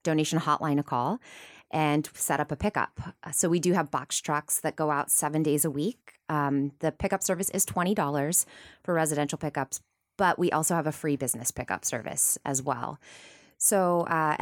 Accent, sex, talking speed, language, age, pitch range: American, female, 185 wpm, English, 20-39, 150-185 Hz